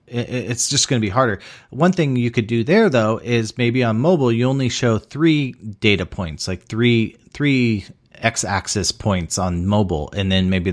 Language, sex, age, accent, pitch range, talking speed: English, male, 30-49, American, 95-125 Hz, 190 wpm